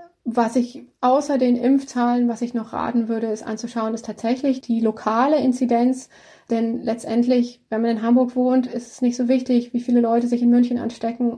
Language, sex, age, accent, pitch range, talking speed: German, female, 20-39, German, 230-250 Hz, 190 wpm